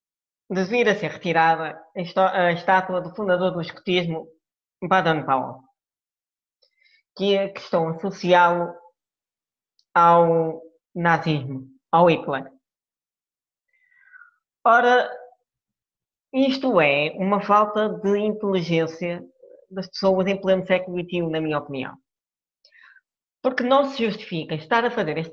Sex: female